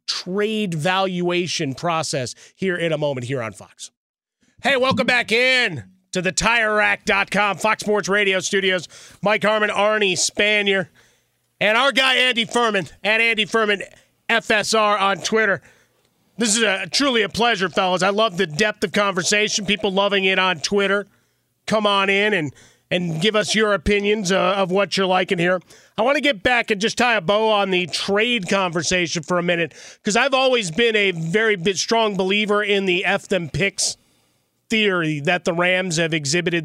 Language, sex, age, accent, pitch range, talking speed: English, male, 30-49, American, 160-210 Hz, 170 wpm